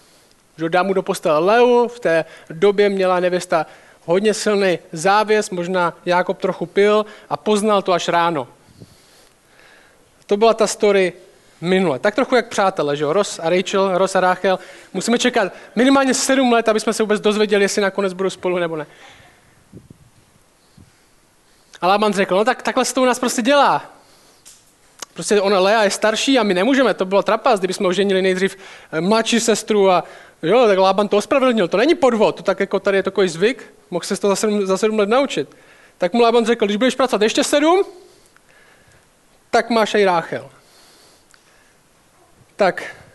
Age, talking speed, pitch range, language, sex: 20-39, 170 wpm, 180-220 Hz, Czech, male